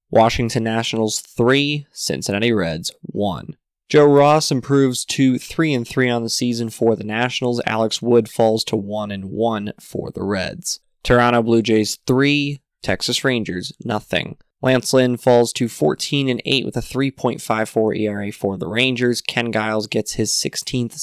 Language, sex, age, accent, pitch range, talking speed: English, male, 20-39, American, 115-145 Hz, 140 wpm